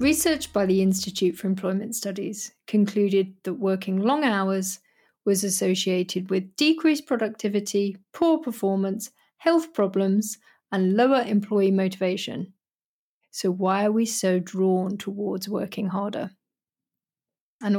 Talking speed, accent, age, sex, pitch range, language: 120 wpm, British, 30-49, female, 190-235 Hz, English